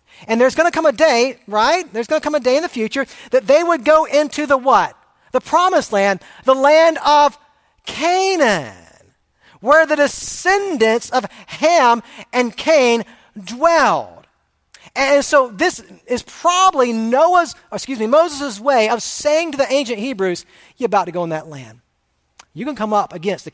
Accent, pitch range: American, 205-310 Hz